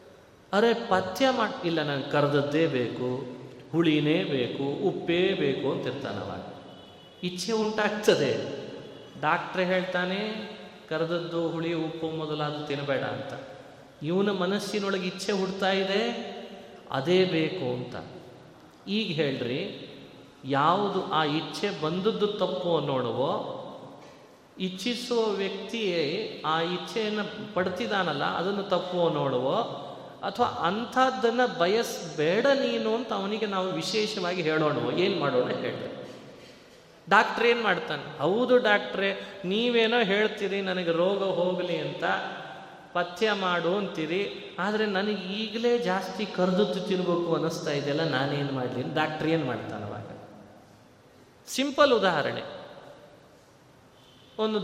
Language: Kannada